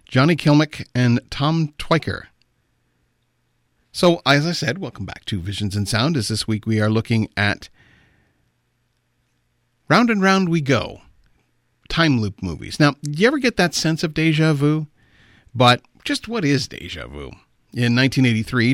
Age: 40-59